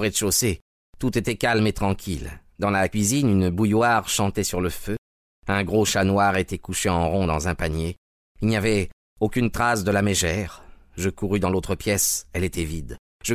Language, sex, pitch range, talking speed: French, male, 85-105 Hz, 200 wpm